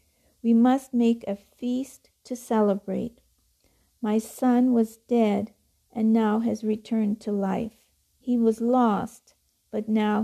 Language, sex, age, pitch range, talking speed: English, female, 50-69, 215-250 Hz, 130 wpm